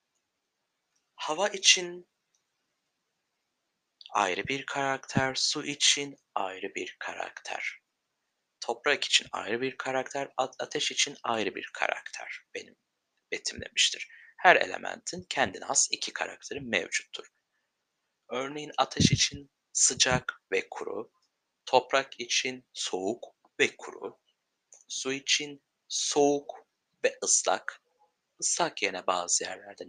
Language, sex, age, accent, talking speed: Turkish, male, 60-79, native, 100 wpm